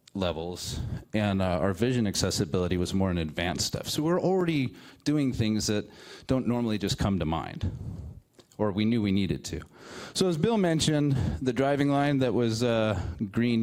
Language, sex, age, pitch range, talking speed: English, male, 30-49, 95-130 Hz, 175 wpm